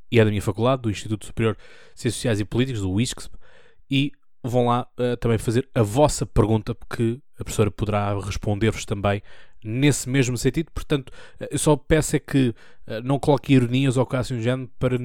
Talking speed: 190 wpm